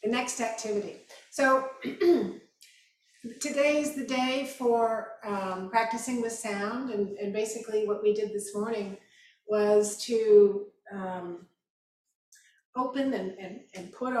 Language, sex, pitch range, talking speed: English, female, 205-235 Hz, 125 wpm